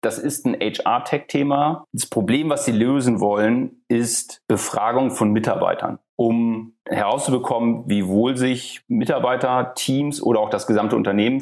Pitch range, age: 110-135 Hz, 30-49